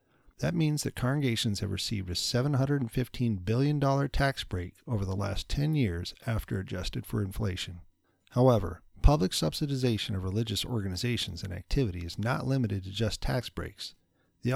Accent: American